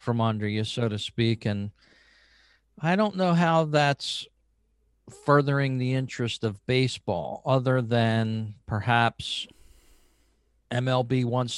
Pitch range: 110-135 Hz